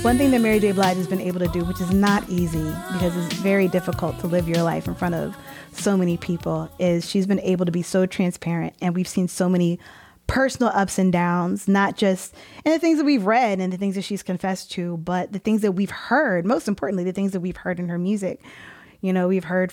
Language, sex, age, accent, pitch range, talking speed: English, female, 20-39, American, 180-225 Hz, 245 wpm